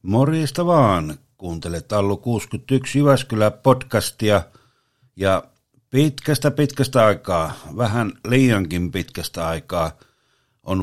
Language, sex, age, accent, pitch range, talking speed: Finnish, male, 60-79, native, 95-125 Hz, 90 wpm